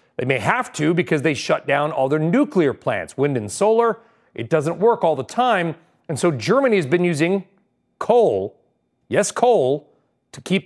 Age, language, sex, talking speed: 40-59, English, male, 180 wpm